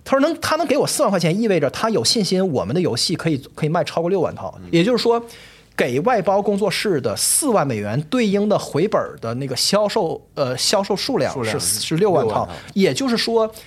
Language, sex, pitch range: Chinese, male, 155-225 Hz